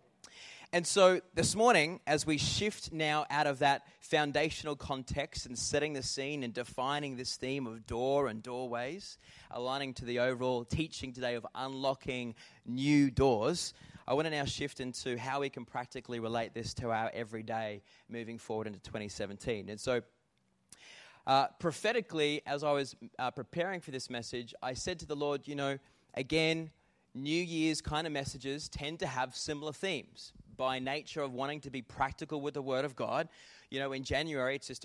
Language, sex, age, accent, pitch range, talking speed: English, male, 20-39, Australian, 120-145 Hz, 175 wpm